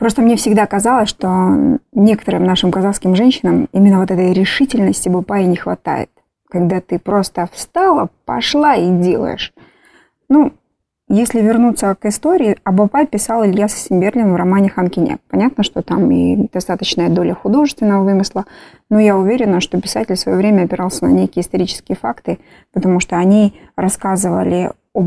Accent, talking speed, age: native, 150 wpm, 20-39